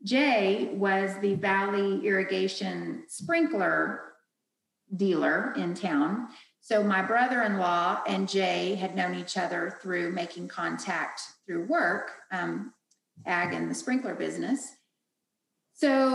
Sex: female